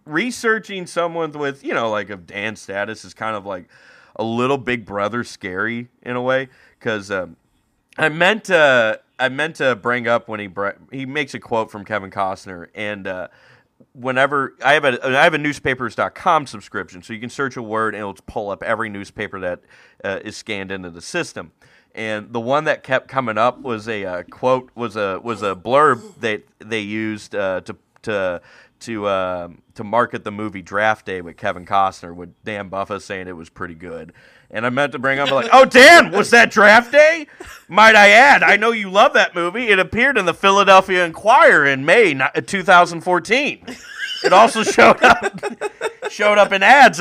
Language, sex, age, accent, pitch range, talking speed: English, male, 30-49, American, 105-170 Hz, 195 wpm